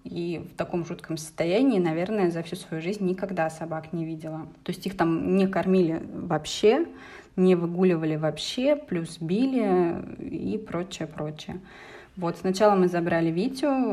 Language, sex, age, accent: Russian, female, 20-39, native